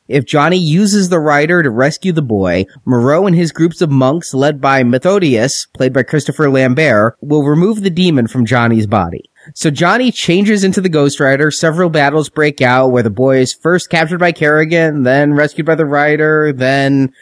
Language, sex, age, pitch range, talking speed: English, male, 30-49, 130-170 Hz, 190 wpm